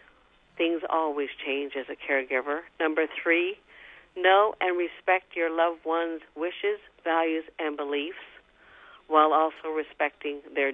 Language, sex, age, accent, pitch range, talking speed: English, female, 50-69, American, 150-180 Hz, 125 wpm